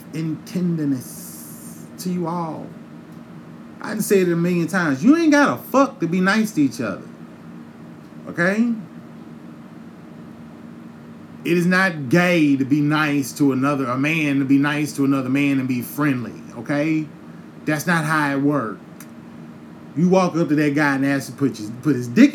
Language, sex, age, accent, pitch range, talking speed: English, male, 30-49, American, 135-185 Hz, 165 wpm